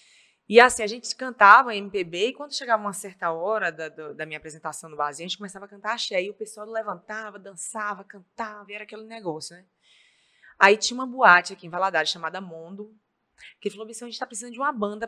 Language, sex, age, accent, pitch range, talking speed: Portuguese, female, 20-39, Brazilian, 175-235 Hz, 225 wpm